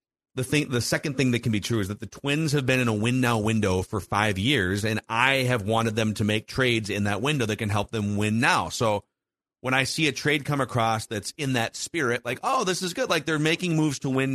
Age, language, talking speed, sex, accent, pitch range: 40-59, English, 260 wpm, male, American, 110-135 Hz